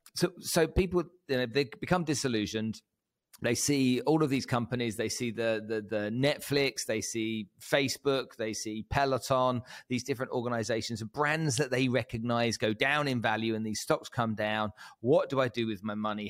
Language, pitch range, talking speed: English, 110-130 Hz, 185 wpm